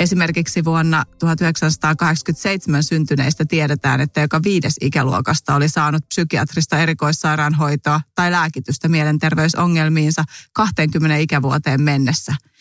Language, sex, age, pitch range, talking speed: Finnish, female, 30-49, 150-175 Hz, 90 wpm